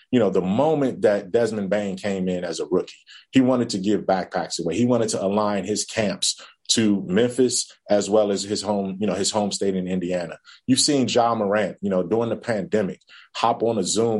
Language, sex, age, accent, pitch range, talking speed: English, male, 30-49, American, 95-110 Hz, 215 wpm